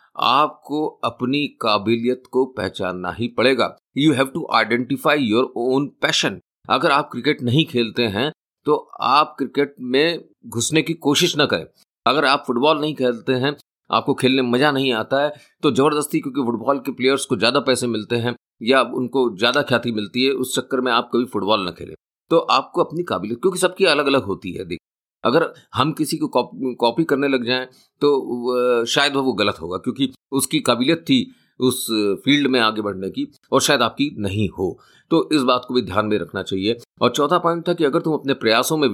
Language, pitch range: Hindi, 115-145 Hz